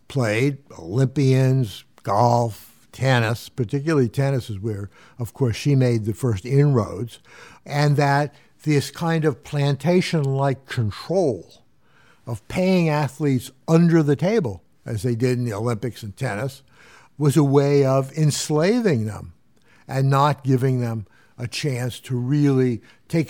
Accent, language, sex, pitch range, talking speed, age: American, English, male, 120-150 Hz, 130 wpm, 60-79